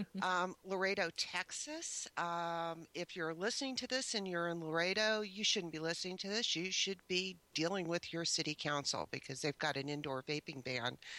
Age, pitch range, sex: 50-69, 150-185 Hz, female